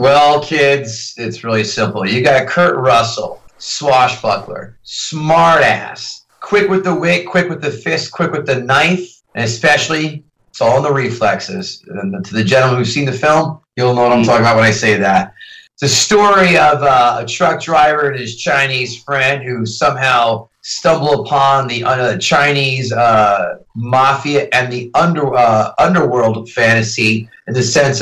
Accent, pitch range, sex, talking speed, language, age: American, 115-150 Hz, male, 165 wpm, English, 30-49